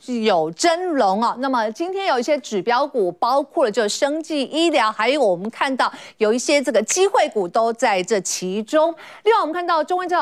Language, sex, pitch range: Chinese, female, 220-340 Hz